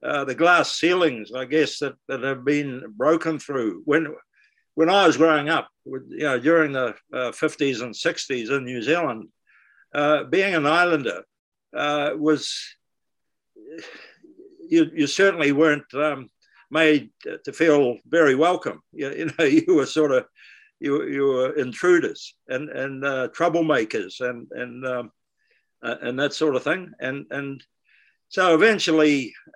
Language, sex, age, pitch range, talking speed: English, male, 60-79, 135-160 Hz, 145 wpm